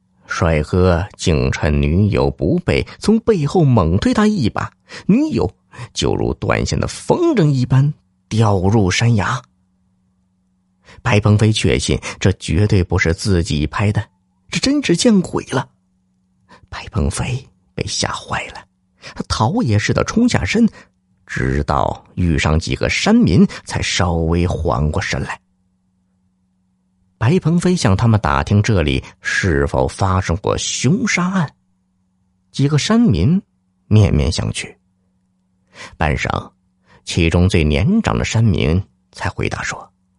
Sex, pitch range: male, 90-120 Hz